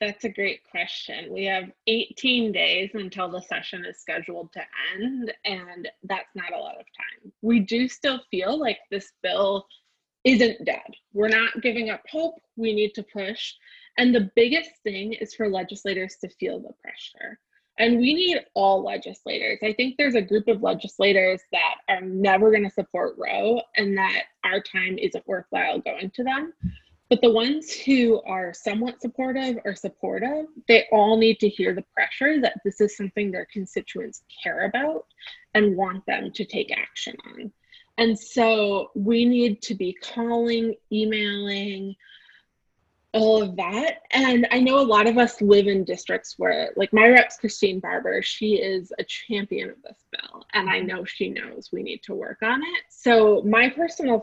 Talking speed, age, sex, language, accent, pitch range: 175 wpm, 20-39, female, English, American, 200-245 Hz